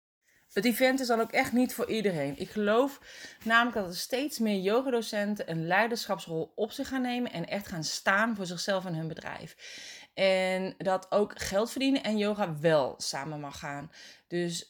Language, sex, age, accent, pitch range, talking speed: Dutch, female, 30-49, Dutch, 155-210 Hz, 180 wpm